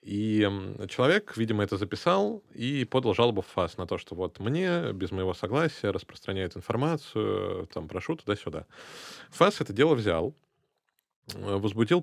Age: 20-39